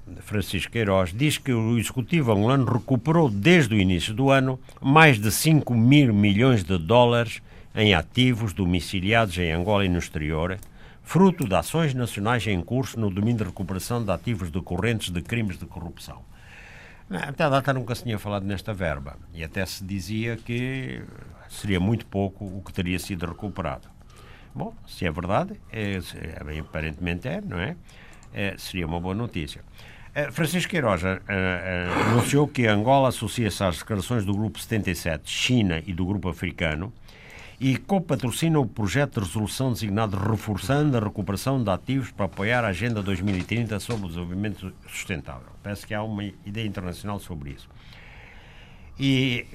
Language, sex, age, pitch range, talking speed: Portuguese, male, 60-79, 90-115 Hz, 155 wpm